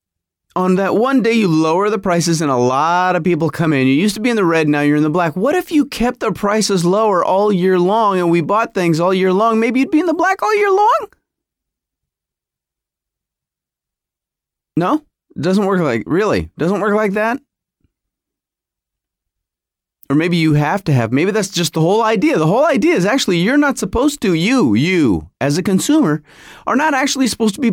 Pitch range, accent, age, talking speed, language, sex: 145-225 Hz, American, 30-49, 205 wpm, English, male